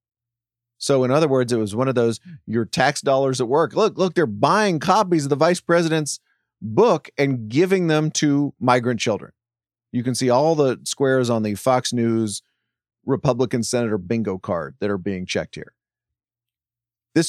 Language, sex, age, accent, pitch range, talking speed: English, male, 40-59, American, 120-155 Hz, 175 wpm